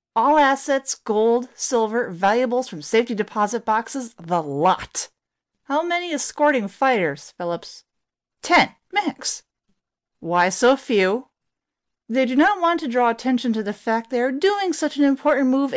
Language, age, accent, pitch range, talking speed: English, 40-59, American, 190-280 Hz, 145 wpm